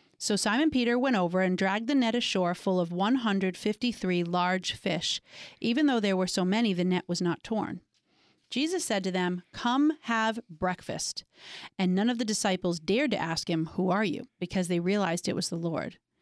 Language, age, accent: English, 40-59, American